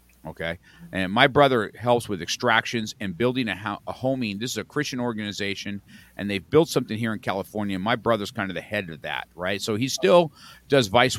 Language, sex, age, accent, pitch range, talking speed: English, male, 50-69, American, 100-130 Hz, 210 wpm